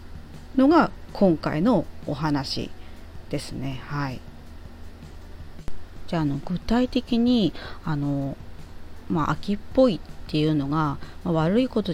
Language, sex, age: Japanese, female, 30-49